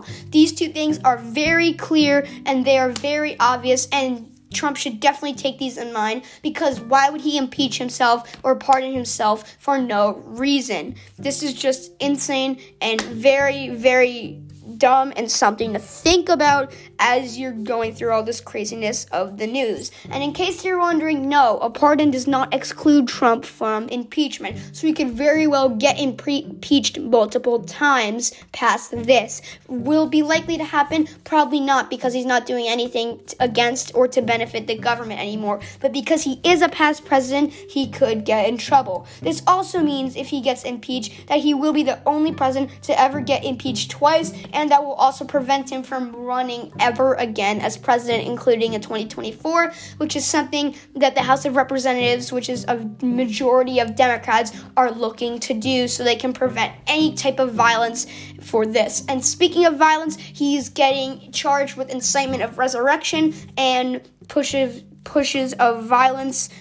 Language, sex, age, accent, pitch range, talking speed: English, female, 10-29, American, 240-290 Hz, 170 wpm